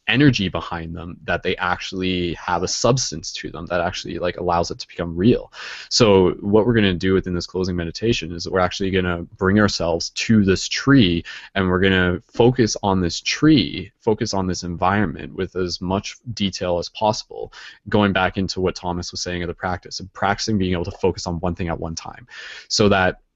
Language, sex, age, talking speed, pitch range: English, male, 20-39, 210 wpm, 90-110 Hz